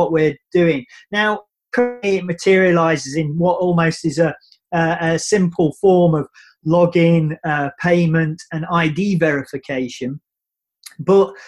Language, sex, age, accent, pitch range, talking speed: English, male, 30-49, British, 160-190 Hz, 120 wpm